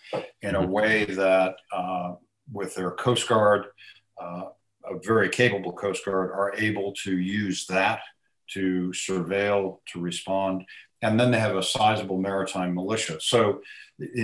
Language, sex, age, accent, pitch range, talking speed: English, male, 50-69, American, 95-105 Hz, 145 wpm